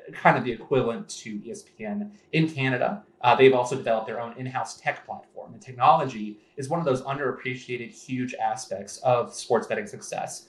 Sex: male